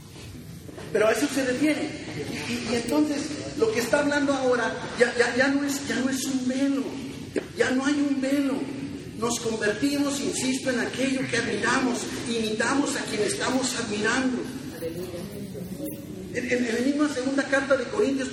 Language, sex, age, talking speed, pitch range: Spanish, male, 40-59, 165 wpm, 210-275 Hz